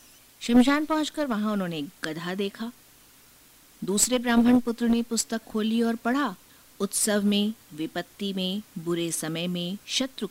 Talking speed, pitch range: 130 wpm, 165-230 Hz